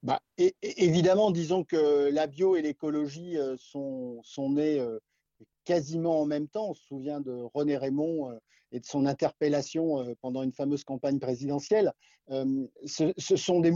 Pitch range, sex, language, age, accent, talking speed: 140-175 Hz, male, French, 50-69, French, 180 wpm